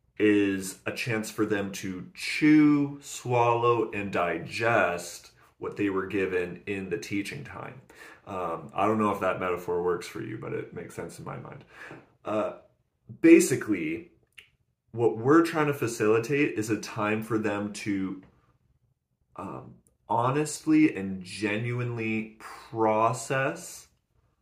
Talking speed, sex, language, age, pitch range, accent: 130 wpm, male, English, 30-49, 105-135 Hz, American